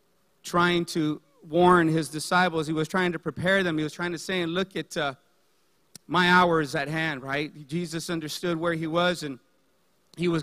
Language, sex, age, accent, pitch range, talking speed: English, male, 40-59, American, 160-195 Hz, 190 wpm